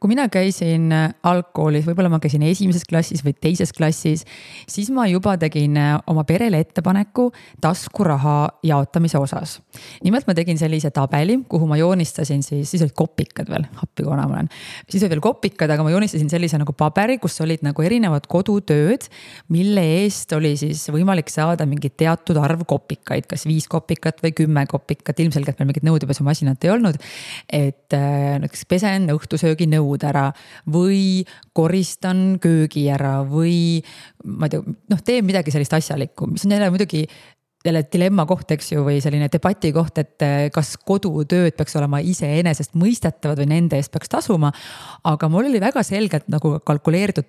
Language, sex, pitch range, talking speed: English, female, 150-185 Hz, 155 wpm